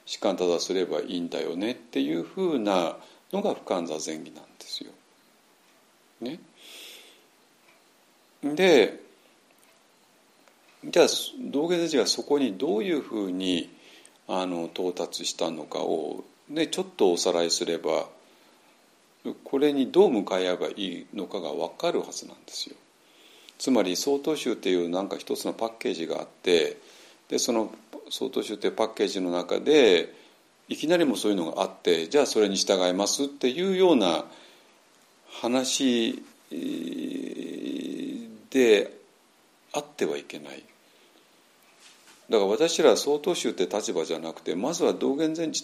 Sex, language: male, Japanese